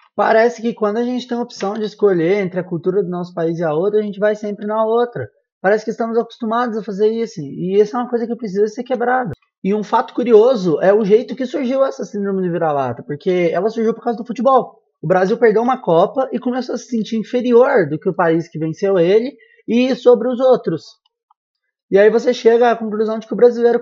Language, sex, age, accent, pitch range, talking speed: Portuguese, male, 20-39, Brazilian, 200-235 Hz, 235 wpm